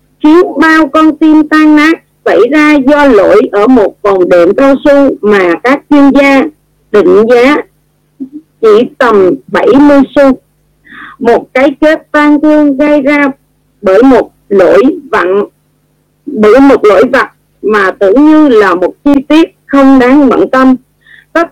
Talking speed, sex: 145 wpm, female